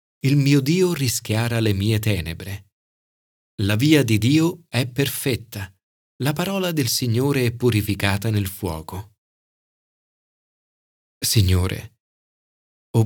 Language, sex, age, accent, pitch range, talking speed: Italian, male, 40-59, native, 105-155 Hz, 105 wpm